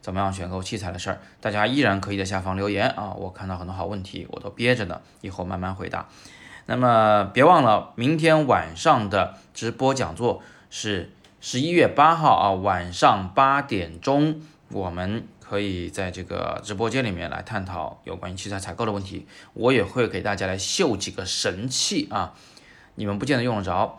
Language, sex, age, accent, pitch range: Chinese, male, 20-39, native, 95-110 Hz